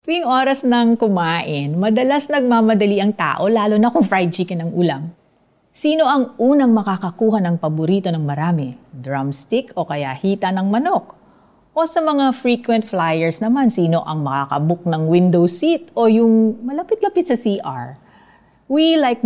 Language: Filipino